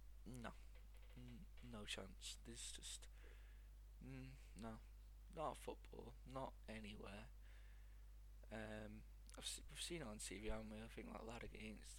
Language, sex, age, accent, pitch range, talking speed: English, male, 20-39, British, 100-115 Hz, 130 wpm